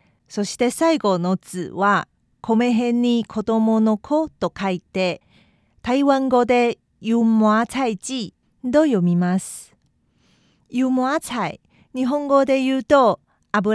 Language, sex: Japanese, female